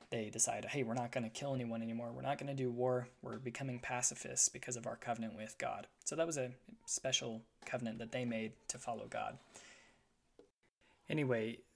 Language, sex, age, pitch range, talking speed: English, male, 10-29, 115-130 Hz, 195 wpm